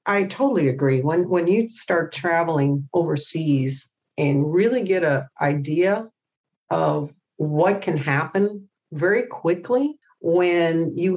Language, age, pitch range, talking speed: English, 50-69, 155-205 Hz, 120 wpm